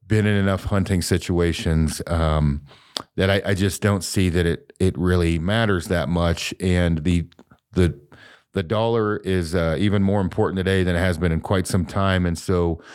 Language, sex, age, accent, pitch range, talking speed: English, male, 40-59, American, 85-100 Hz, 185 wpm